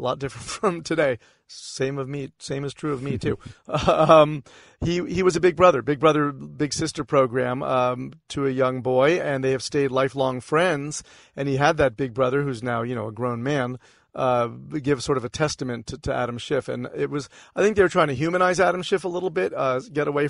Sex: male